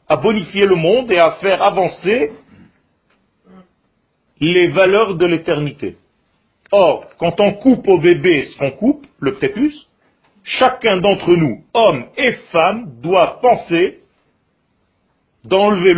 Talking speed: 120 wpm